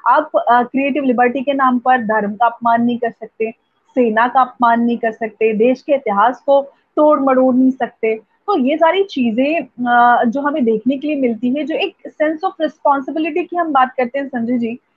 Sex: female